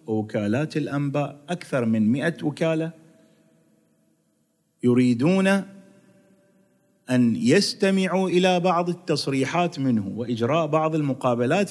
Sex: male